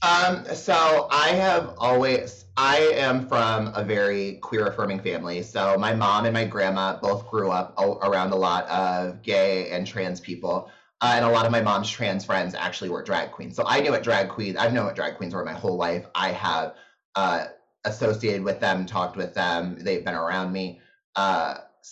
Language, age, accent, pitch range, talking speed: English, 30-49, American, 100-130 Hz, 195 wpm